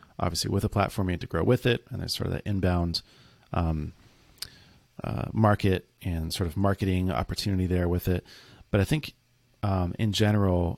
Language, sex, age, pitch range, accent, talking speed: English, male, 30-49, 90-110 Hz, American, 185 wpm